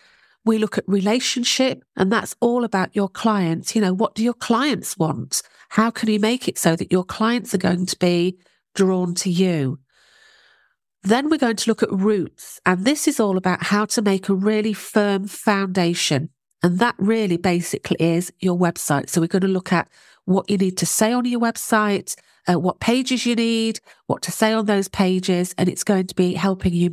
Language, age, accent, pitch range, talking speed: English, 40-59, British, 180-225 Hz, 205 wpm